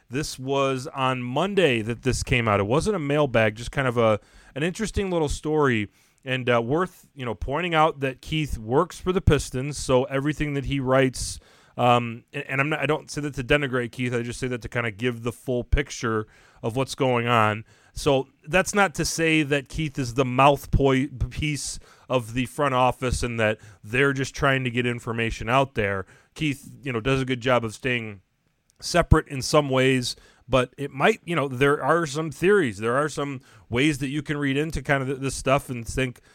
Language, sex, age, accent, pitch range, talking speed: English, male, 30-49, American, 120-145 Hz, 210 wpm